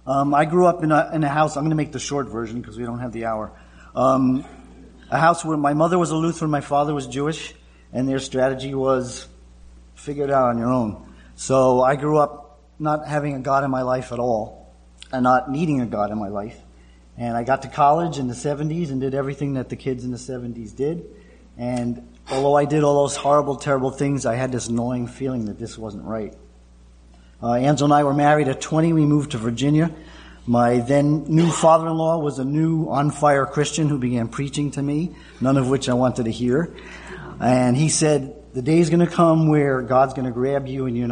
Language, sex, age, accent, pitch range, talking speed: English, male, 40-59, American, 120-145 Hz, 220 wpm